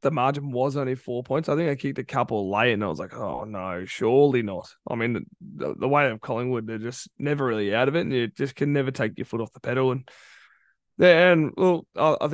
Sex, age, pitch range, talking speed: male, 20-39, 120-150 Hz, 250 wpm